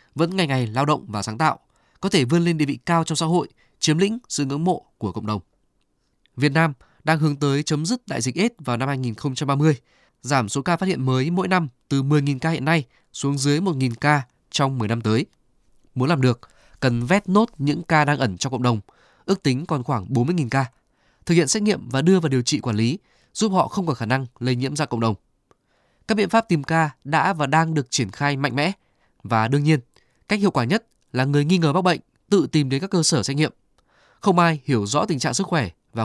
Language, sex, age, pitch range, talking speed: Vietnamese, male, 20-39, 130-170 Hz, 240 wpm